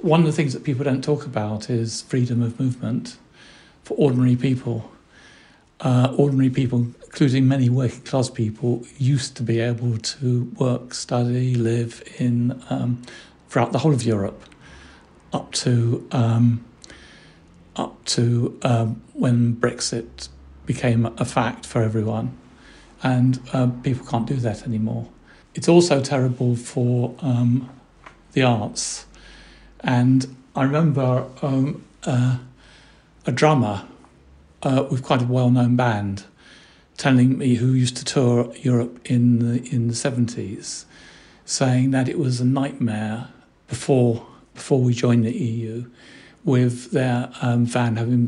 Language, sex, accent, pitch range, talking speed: English, male, British, 120-130 Hz, 135 wpm